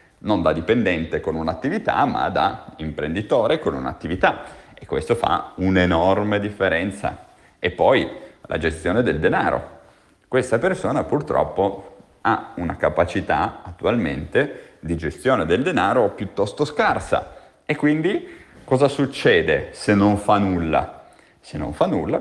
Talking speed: 125 wpm